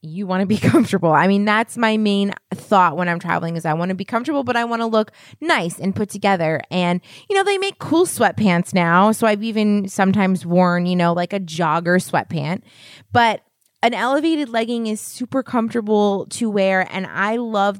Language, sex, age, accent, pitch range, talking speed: English, female, 20-39, American, 175-220 Hz, 200 wpm